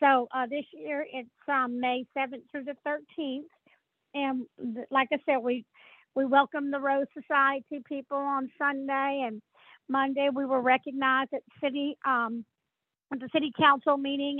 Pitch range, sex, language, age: 260-295 Hz, female, English, 50-69